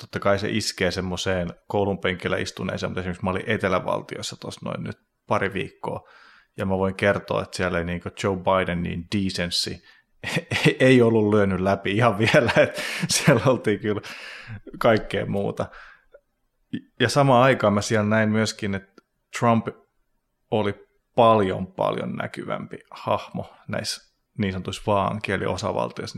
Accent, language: native, Finnish